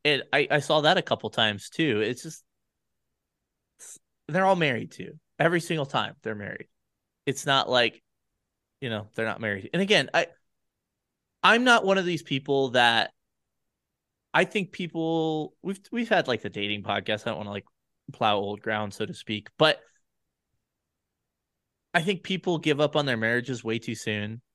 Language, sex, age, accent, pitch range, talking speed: English, male, 20-39, American, 110-155 Hz, 175 wpm